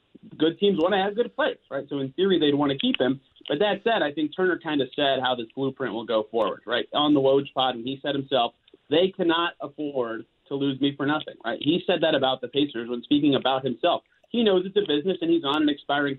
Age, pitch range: 30-49, 135-185 Hz